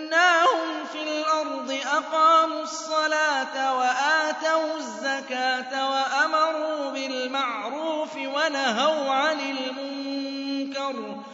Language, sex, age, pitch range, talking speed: Arabic, male, 30-49, 270-315 Hz, 70 wpm